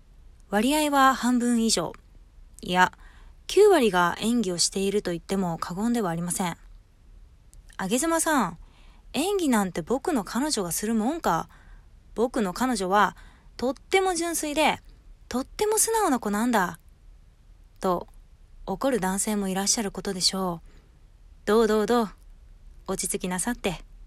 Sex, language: female, Japanese